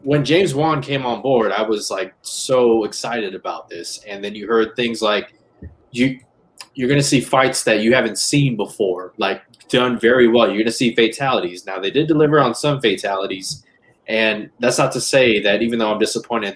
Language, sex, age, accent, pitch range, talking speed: English, male, 20-39, American, 105-125 Hz, 200 wpm